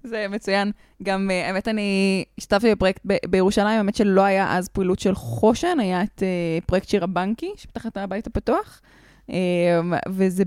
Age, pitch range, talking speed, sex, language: 20-39, 180-220 Hz, 155 wpm, female, Hebrew